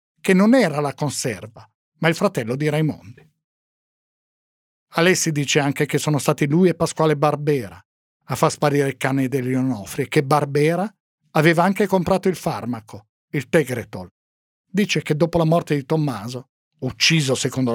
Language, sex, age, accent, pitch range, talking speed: Italian, male, 50-69, native, 125-165 Hz, 155 wpm